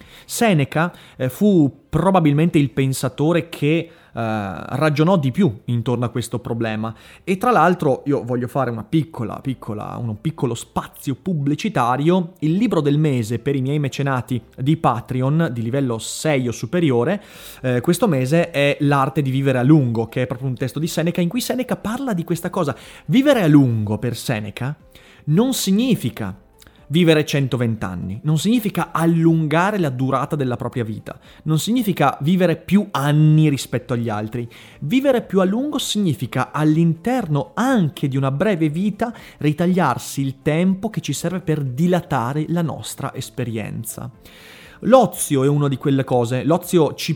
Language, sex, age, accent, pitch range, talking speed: Italian, male, 30-49, native, 125-170 Hz, 155 wpm